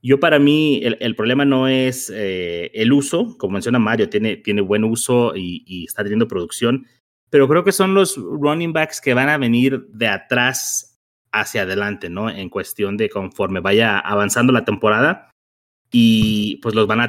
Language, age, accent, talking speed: Spanish, 30-49, Mexican, 185 wpm